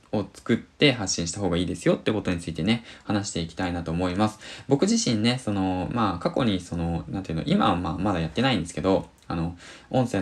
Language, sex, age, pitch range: Japanese, male, 20-39, 85-110 Hz